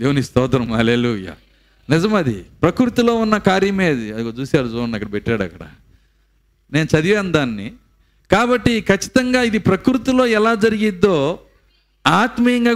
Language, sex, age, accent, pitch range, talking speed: Telugu, male, 50-69, native, 150-215 Hz, 115 wpm